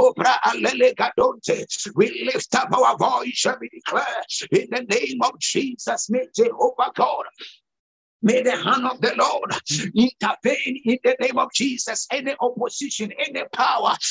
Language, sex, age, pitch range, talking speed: English, male, 60-79, 235-285 Hz, 150 wpm